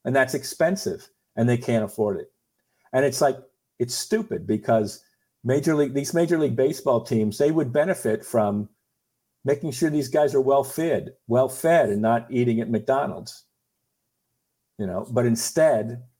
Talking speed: 160 wpm